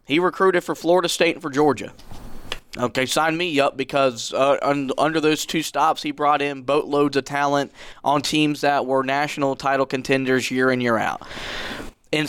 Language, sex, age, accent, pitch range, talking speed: English, male, 20-39, American, 135-155 Hz, 175 wpm